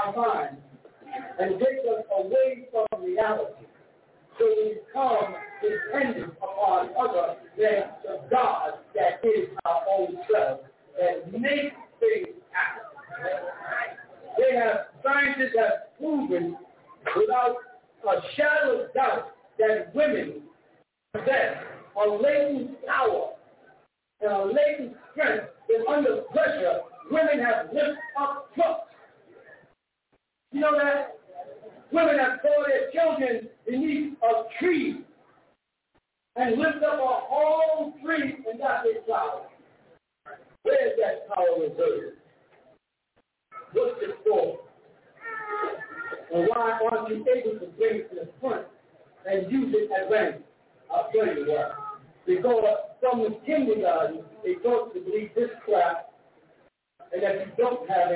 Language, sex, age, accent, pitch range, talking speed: English, male, 50-69, American, 225-370 Hz, 120 wpm